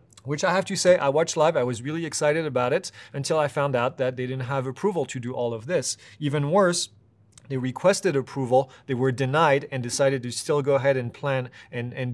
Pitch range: 125-150 Hz